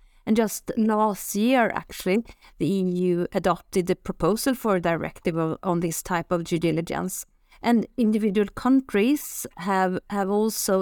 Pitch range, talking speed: 180-215 Hz, 145 wpm